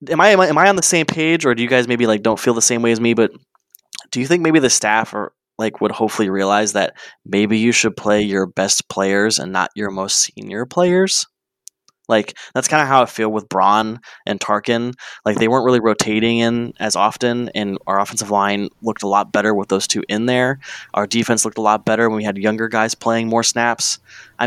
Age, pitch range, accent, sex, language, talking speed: 20-39, 105-120 Hz, American, male, English, 235 wpm